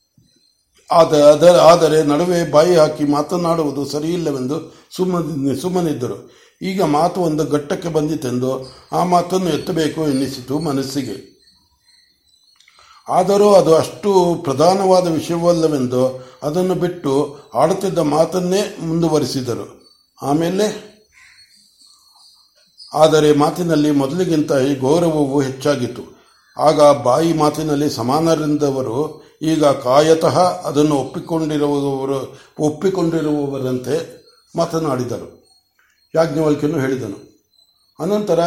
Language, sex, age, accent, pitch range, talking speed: Kannada, male, 60-79, native, 145-175 Hz, 75 wpm